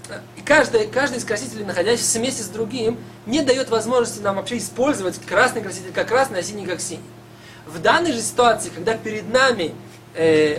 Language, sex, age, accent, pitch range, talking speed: Russian, male, 20-39, native, 160-235 Hz, 170 wpm